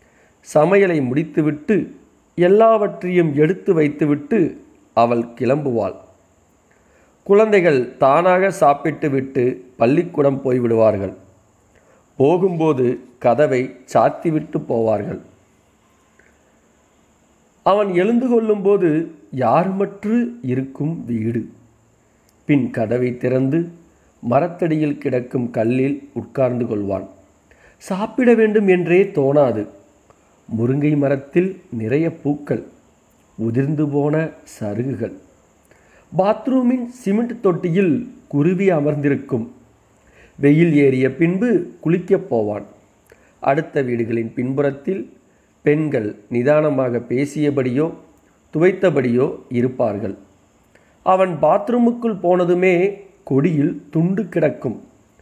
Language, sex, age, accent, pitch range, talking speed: Tamil, male, 40-59, native, 125-180 Hz, 70 wpm